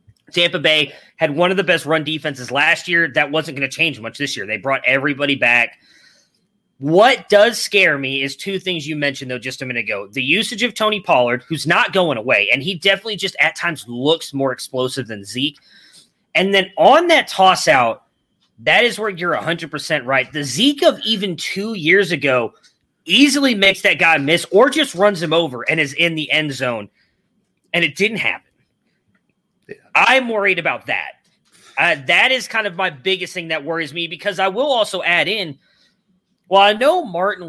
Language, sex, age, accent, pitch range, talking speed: English, male, 30-49, American, 150-200 Hz, 190 wpm